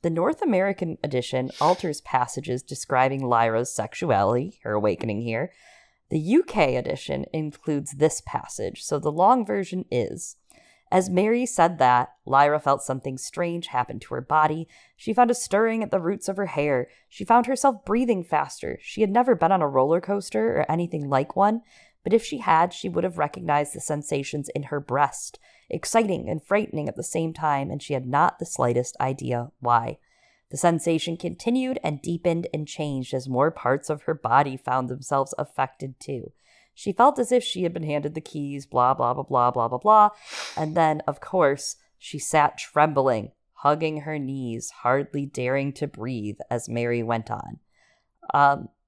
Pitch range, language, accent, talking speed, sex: 130-190 Hz, English, American, 175 wpm, female